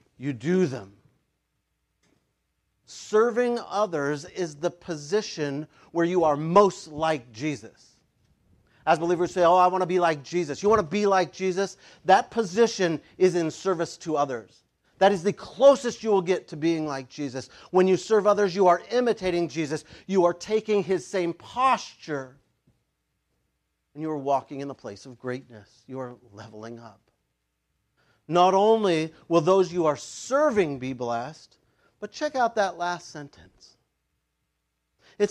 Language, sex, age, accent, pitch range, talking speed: English, male, 40-59, American, 140-215 Hz, 155 wpm